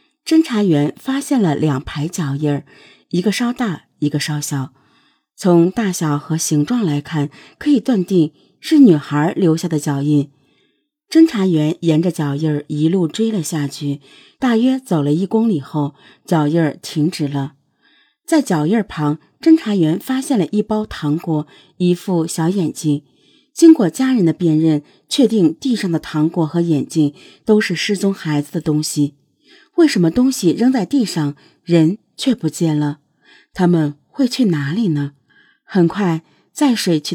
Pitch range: 150-225 Hz